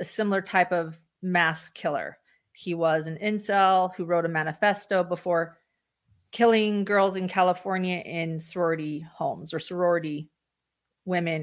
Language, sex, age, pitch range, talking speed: English, female, 30-49, 170-205 Hz, 130 wpm